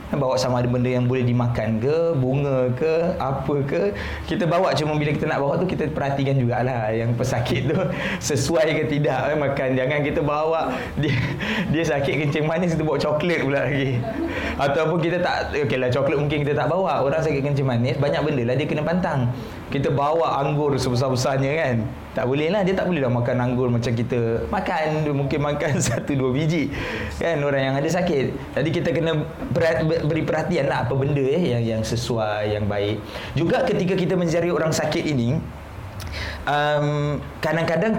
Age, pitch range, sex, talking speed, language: 20-39, 125-165 Hz, male, 170 wpm, Malay